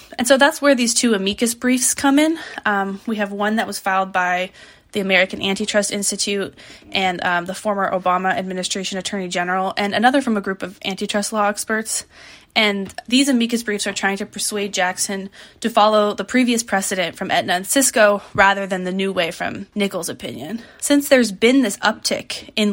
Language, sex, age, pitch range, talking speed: English, female, 20-39, 185-220 Hz, 185 wpm